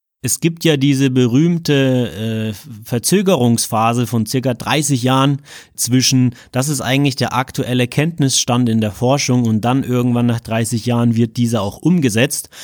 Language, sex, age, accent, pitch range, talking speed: German, male, 30-49, German, 120-155 Hz, 145 wpm